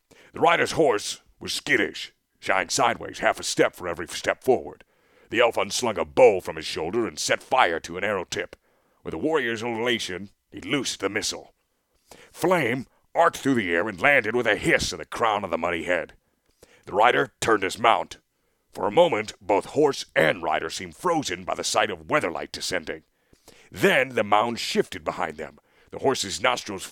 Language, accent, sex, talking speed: English, American, male, 185 wpm